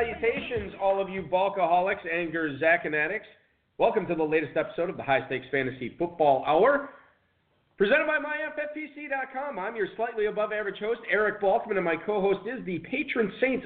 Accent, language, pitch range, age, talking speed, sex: American, English, 145-210 Hz, 40-59, 165 wpm, male